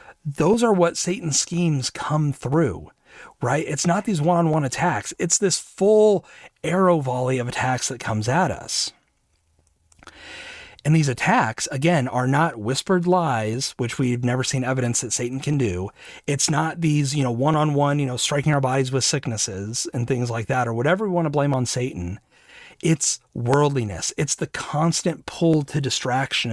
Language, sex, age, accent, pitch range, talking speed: English, male, 40-59, American, 120-160 Hz, 165 wpm